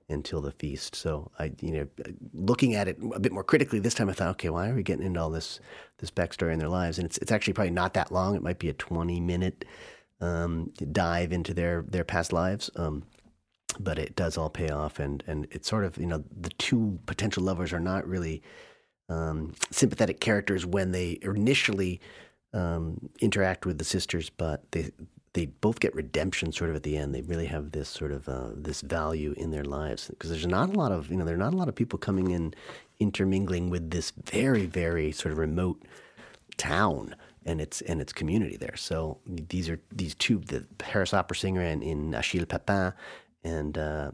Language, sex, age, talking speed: English, male, 40-59, 210 wpm